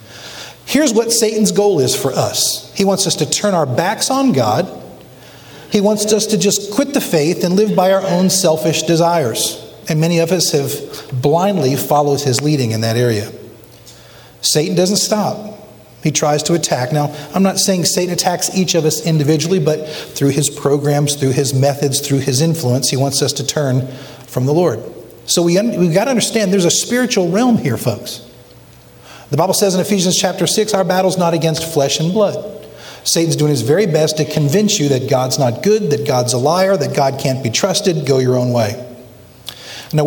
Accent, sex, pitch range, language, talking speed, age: American, male, 140-195 Hz, English, 195 wpm, 50-69